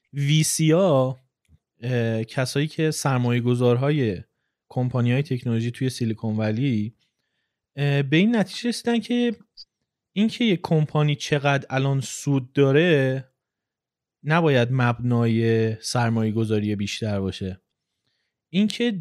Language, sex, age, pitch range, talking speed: Persian, male, 30-49, 110-140 Hz, 95 wpm